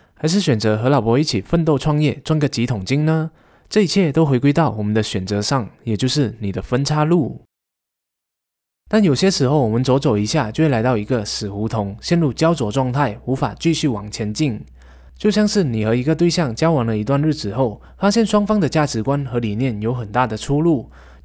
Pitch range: 110-160 Hz